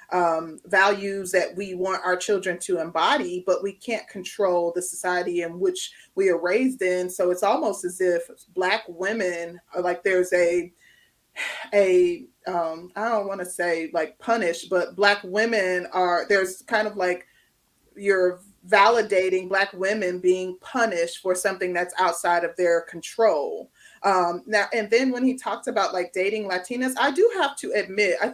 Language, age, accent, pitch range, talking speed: English, 30-49, American, 180-230 Hz, 170 wpm